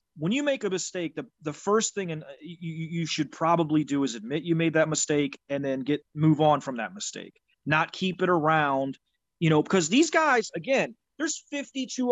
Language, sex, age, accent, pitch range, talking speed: English, male, 30-49, American, 150-195 Hz, 205 wpm